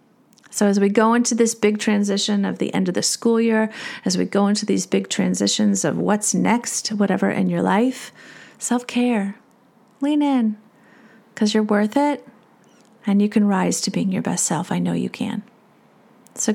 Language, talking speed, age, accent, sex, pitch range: English, 180 wpm, 30-49, American, female, 190-230 Hz